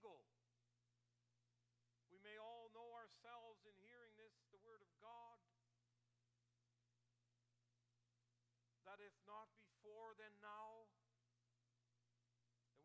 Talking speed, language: 90 wpm, English